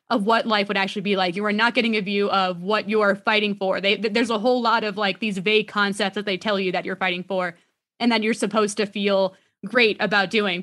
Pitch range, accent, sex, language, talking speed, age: 195-230 Hz, American, female, English, 255 wpm, 20-39